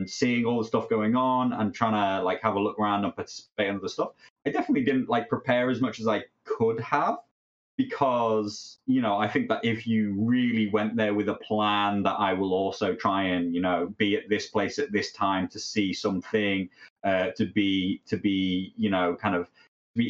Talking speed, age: 215 wpm, 20-39